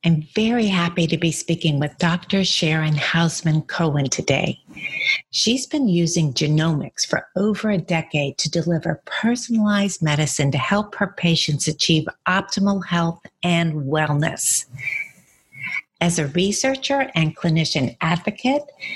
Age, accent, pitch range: 60-79, American, 160-195 Hz